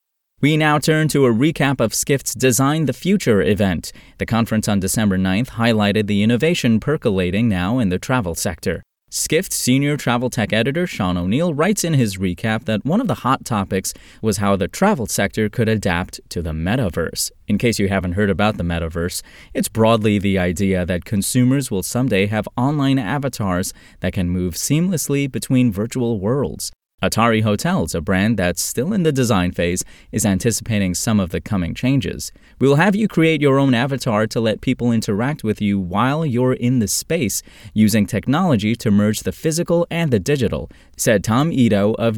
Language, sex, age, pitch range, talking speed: English, male, 20-39, 100-135 Hz, 180 wpm